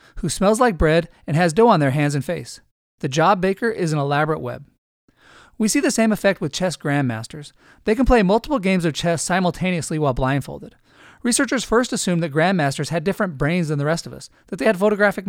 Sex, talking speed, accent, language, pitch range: male, 210 wpm, American, English, 150-205 Hz